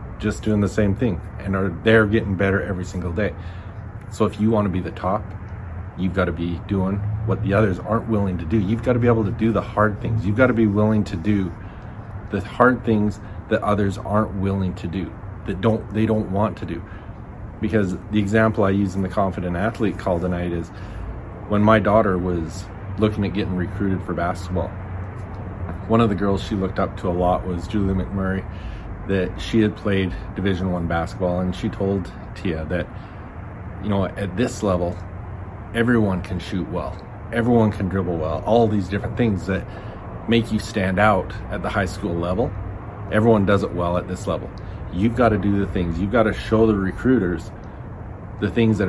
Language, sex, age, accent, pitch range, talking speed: English, male, 30-49, American, 95-105 Hz, 195 wpm